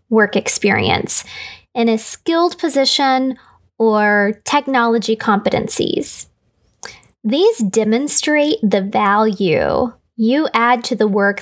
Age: 20-39